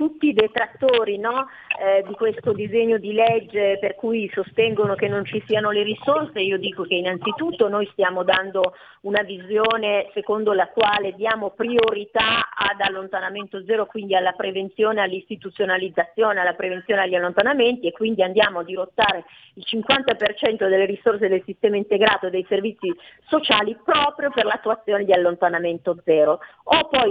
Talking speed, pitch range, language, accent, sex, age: 150 wpm, 190-230 Hz, Italian, native, female, 40-59